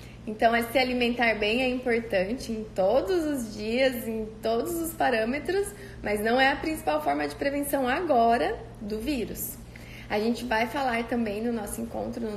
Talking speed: 165 wpm